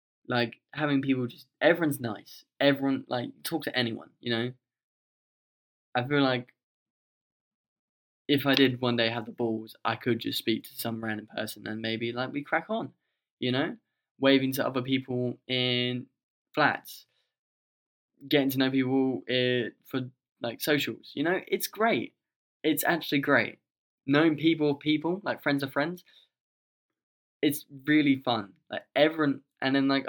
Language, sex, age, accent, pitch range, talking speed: English, male, 10-29, British, 120-150 Hz, 150 wpm